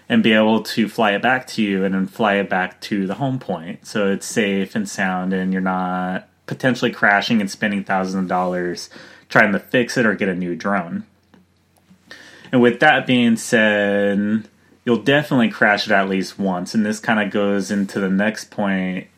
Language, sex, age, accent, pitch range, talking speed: English, male, 30-49, American, 100-120 Hz, 195 wpm